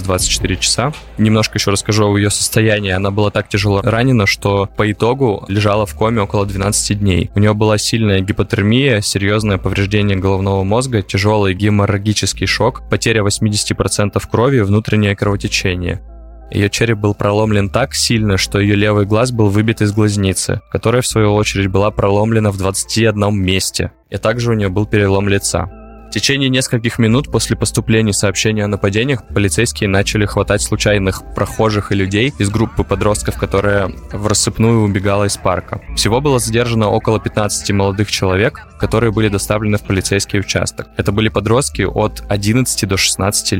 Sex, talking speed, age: male, 155 wpm, 20-39